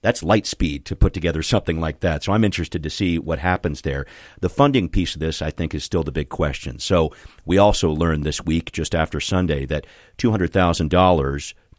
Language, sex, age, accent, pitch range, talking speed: English, male, 40-59, American, 75-95 Hz, 205 wpm